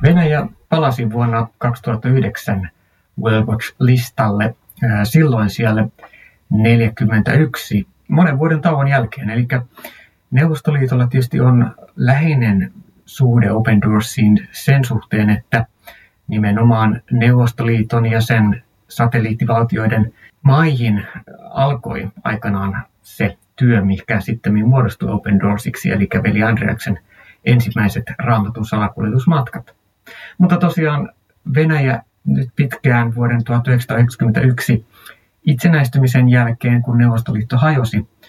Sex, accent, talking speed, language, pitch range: male, native, 85 wpm, Finnish, 105-130 Hz